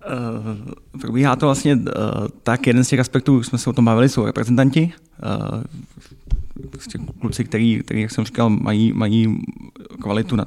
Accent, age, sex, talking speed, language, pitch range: native, 20-39, male, 165 wpm, Czech, 110-120 Hz